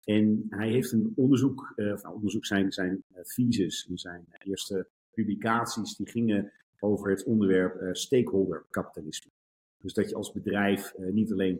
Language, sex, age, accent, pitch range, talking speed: Dutch, male, 50-69, Dutch, 95-110 Hz, 155 wpm